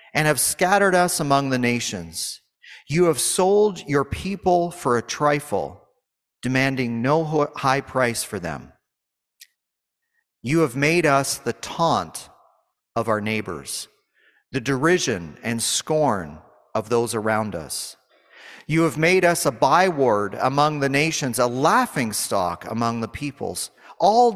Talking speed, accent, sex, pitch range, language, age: 135 wpm, American, male, 125-165 Hz, English, 40-59